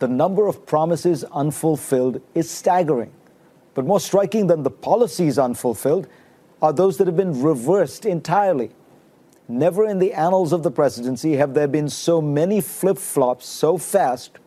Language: English